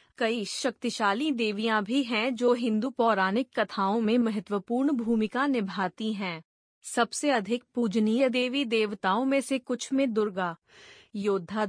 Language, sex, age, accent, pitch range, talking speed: Hindi, female, 30-49, native, 210-250 Hz, 130 wpm